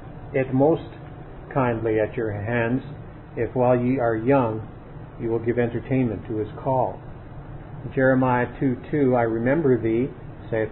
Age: 50-69